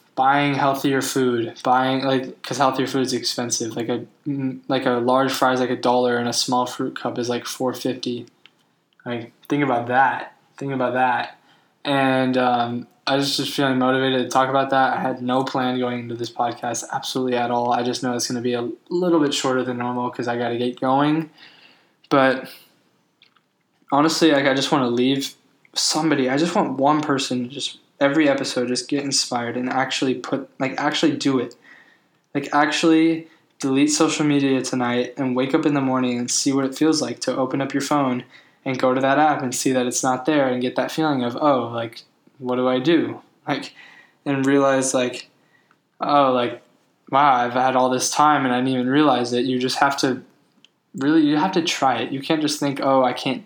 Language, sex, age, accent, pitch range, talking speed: English, male, 10-29, American, 125-145 Hz, 205 wpm